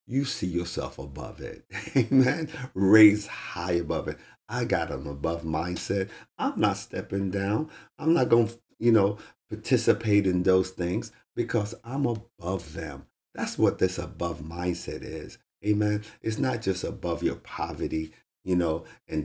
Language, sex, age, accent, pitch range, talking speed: English, male, 50-69, American, 85-110 Hz, 150 wpm